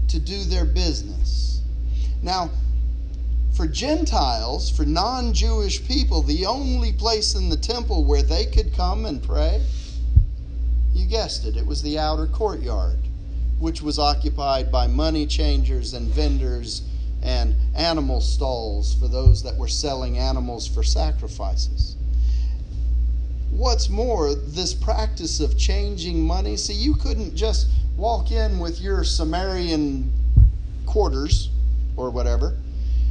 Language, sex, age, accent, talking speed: English, male, 40-59, American, 125 wpm